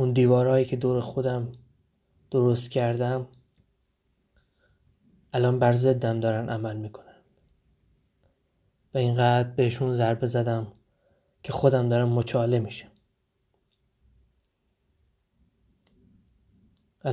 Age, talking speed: 20-39, 80 wpm